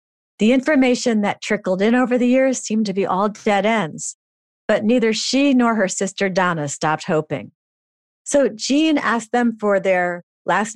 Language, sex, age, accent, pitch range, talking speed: English, female, 40-59, American, 165-215 Hz, 165 wpm